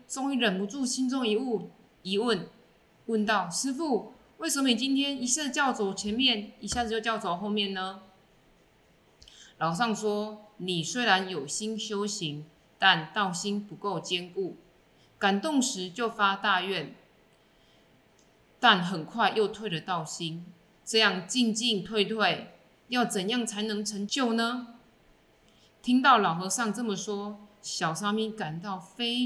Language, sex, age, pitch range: Chinese, female, 20-39, 175-225 Hz